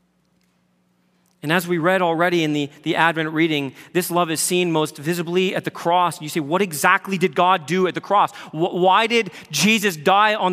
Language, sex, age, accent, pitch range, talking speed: English, male, 30-49, American, 170-215 Hz, 195 wpm